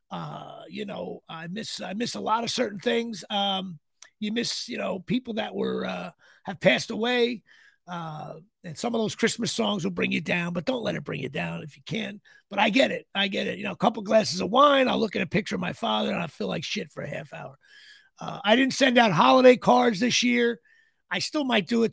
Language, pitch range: English, 180-235 Hz